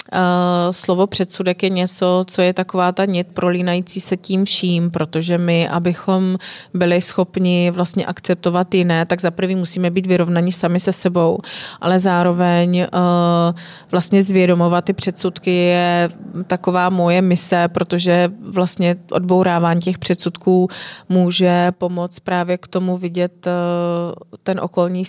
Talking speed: 135 wpm